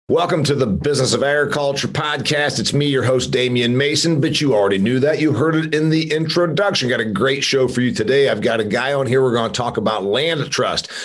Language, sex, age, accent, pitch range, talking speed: English, male, 40-59, American, 115-145 Hz, 240 wpm